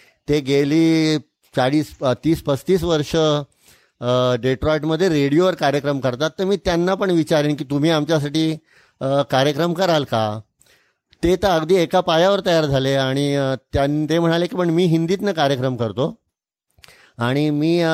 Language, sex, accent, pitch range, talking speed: Marathi, male, native, 135-170 Hz, 95 wpm